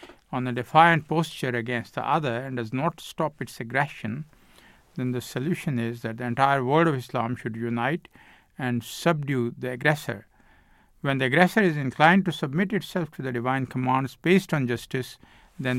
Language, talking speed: English, 170 wpm